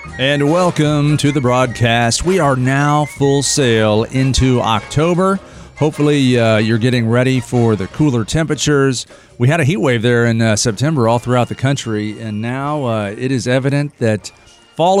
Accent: American